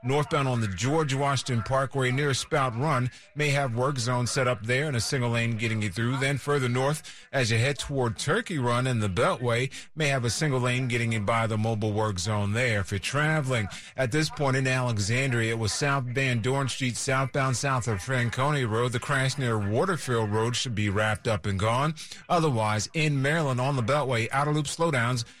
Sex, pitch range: male, 120-145 Hz